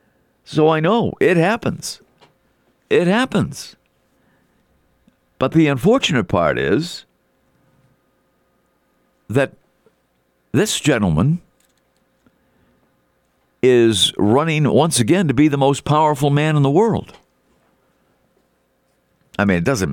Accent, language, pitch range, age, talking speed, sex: American, English, 110-150 Hz, 50-69, 95 wpm, male